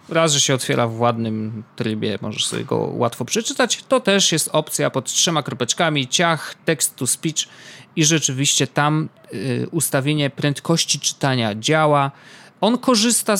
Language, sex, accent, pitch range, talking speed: Polish, male, native, 130-175 Hz, 145 wpm